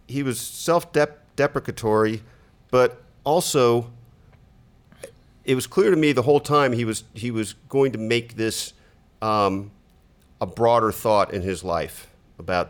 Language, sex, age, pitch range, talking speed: English, male, 50-69, 95-120 Hz, 140 wpm